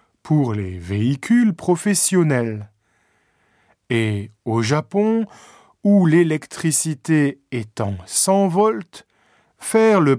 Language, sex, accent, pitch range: Japanese, male, French, 115-185 Hz